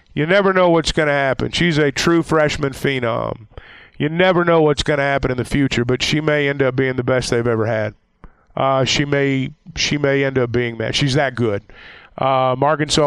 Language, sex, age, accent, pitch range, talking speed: English, male, 50-69, American, 140-180 Hz, 215 wpm